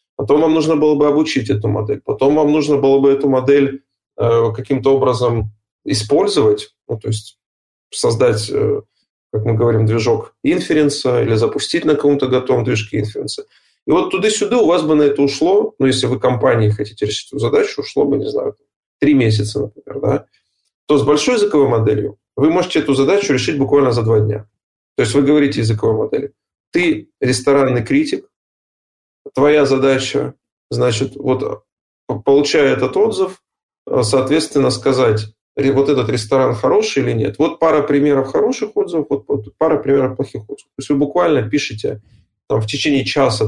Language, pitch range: Russian, 125-155 Hz